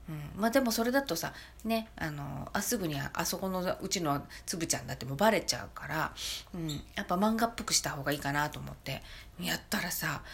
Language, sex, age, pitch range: Japanese, female, 40-59, 140-225 Hz